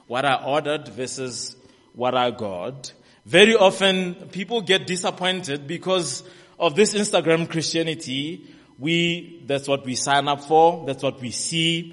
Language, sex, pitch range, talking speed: English, male, 115-160 Hz, 140 wpm